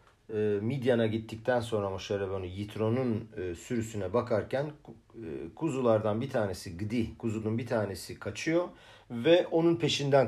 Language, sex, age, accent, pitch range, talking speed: Turkish, male, 50-69, native, 110-145 Hz, 105 wpm